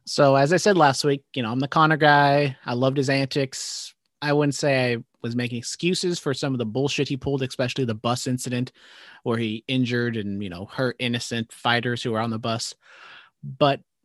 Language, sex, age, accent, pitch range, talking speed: English, male, 30-49, American, 120-145 Hz, 210 wpm